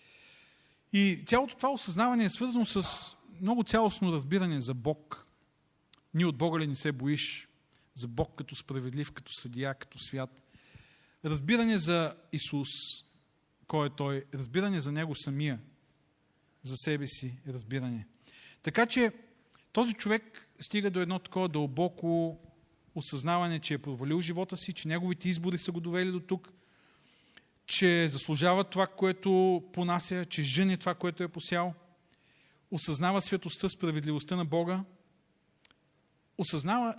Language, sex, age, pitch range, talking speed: Bulgarian, male, 40-59, 145-185 Hz, 135 wpm